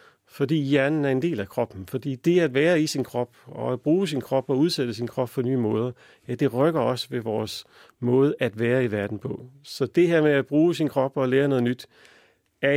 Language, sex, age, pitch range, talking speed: Danish, male, 40-59, 120-150 Hz, 240 wpm